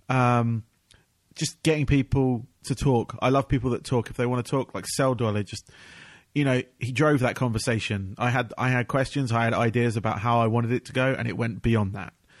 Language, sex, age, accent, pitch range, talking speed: English, male, 30-49, British, 110-130 Hz, 225 wpm